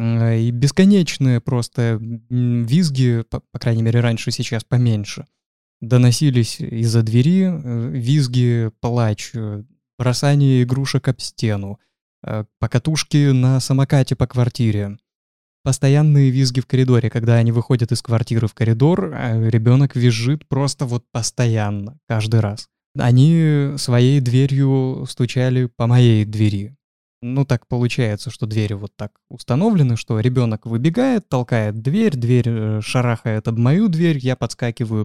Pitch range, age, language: 115-140 Hz, 20-39, Russian